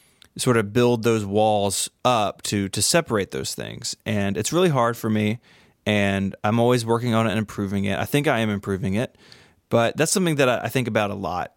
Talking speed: 215 wpm